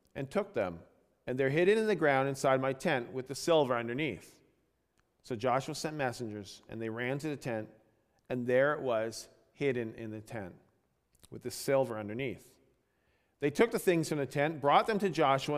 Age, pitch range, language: 40-59, 110-150 Hz, English